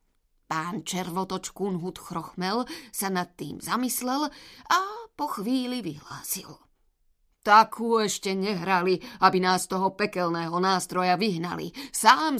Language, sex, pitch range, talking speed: Slovak, female, 170-230 Hz, 110 wpm